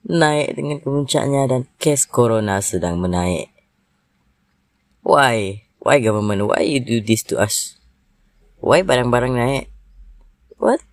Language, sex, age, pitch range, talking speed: Malay, female, 20-39, 100-145 Hz, 115 wpm